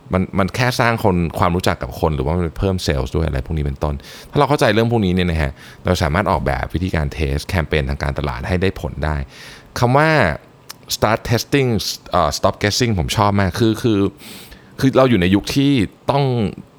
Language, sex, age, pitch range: Thai, male, 20-39, 80-110 Hz